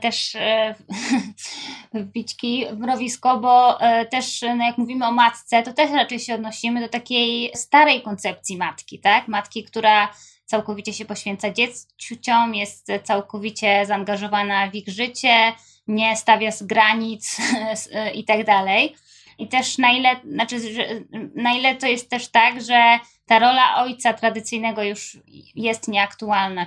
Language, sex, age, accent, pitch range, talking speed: Polish, female, 10-29, native, 215-255 Hz, 150 wpm